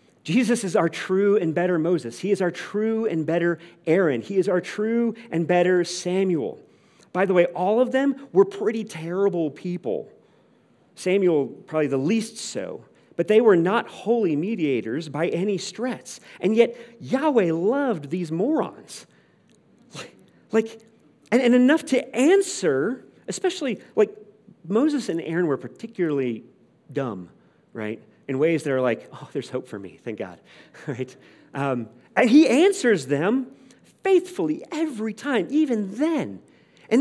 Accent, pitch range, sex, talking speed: American, 160-230 Hz, male, 145 wpm